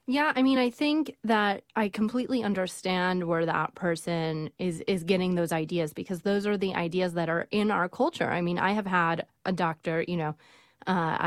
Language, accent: English, American